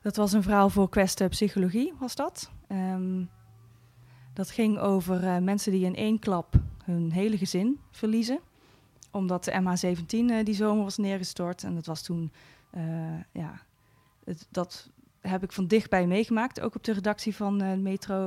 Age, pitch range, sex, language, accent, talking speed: 20-39, 170-205 Hz, female, Dutch, Dutch, 170 wpm